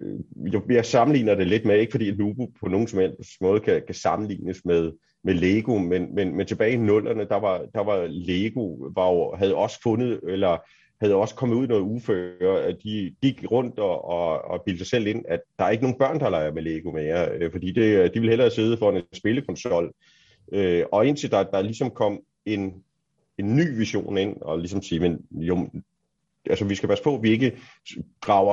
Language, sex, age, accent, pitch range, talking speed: Danish, male, 30-49, native, 95-120 Hz, 200 wpm